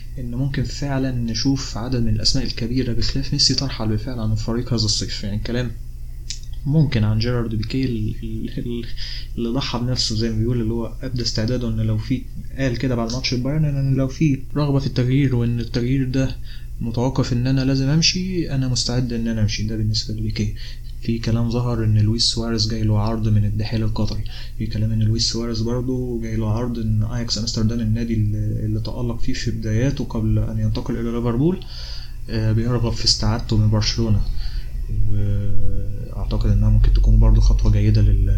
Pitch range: 110-120 Hz